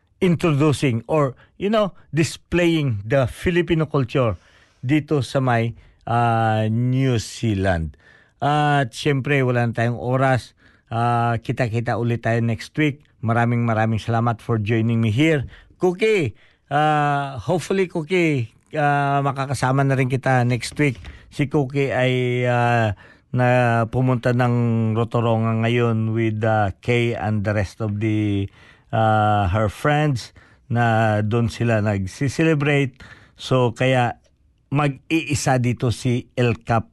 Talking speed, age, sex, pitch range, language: 125 wpm, 50-69, male, 115-150 Hz, Filipino